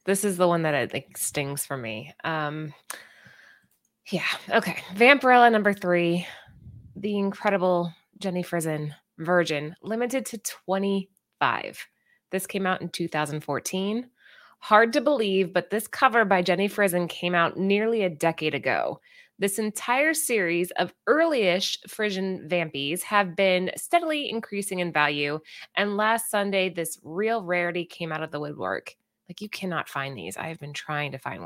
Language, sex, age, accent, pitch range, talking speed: English, female, 20-39, American, 170-215 Hz, 155 wpm